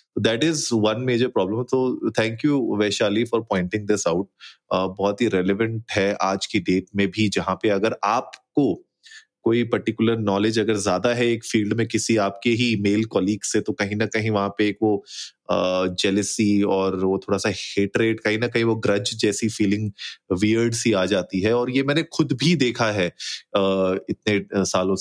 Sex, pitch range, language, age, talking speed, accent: male, 100-115 Hz, Hindi, 30-49, 190 wpm, native